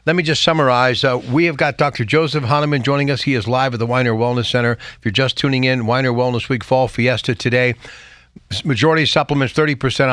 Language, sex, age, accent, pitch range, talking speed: English, male, 50-69, American, 125-155 Hz, 215 wpm